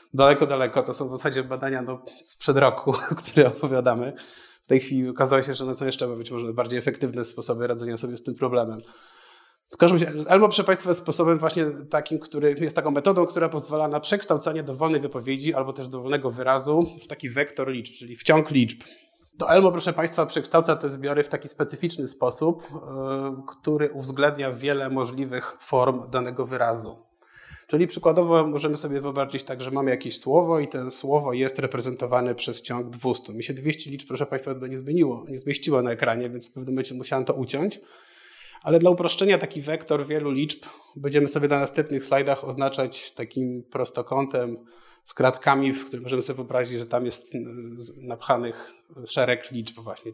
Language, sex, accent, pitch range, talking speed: Polish, male, native, 125-150 Hz, 175 wpm